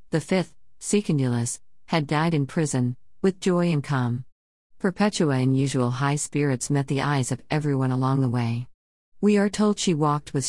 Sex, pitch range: female, 130-160 Hz